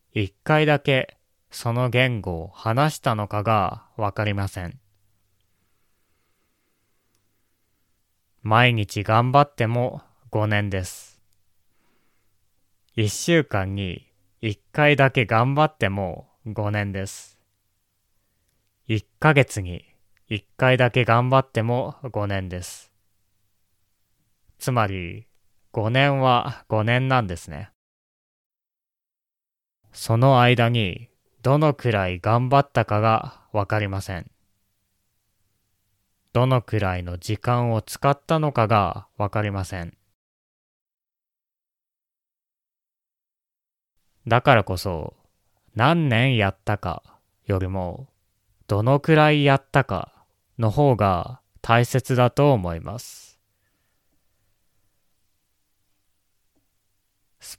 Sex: male